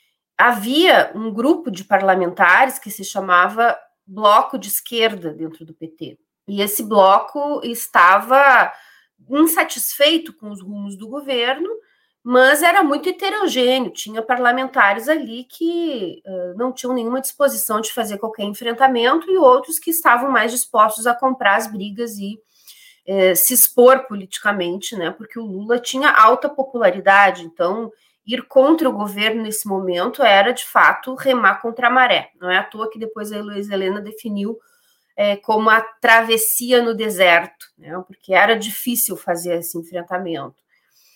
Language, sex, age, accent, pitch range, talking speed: Portuguese, female, 30-49, Brazilian, 200-265 Hz, 145 wpm